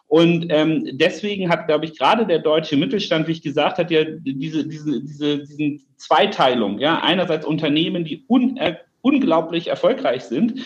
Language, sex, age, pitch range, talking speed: German, male, 40-59, 150-175 Hz, 160 wpm